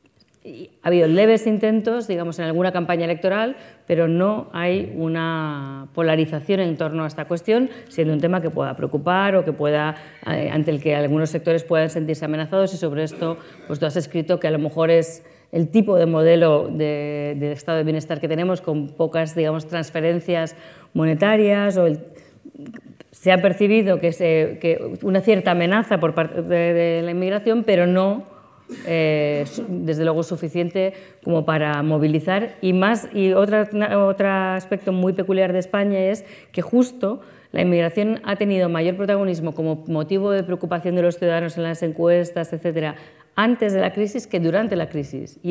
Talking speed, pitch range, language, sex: 170 wpm, 160-195 Hz, Spanish, female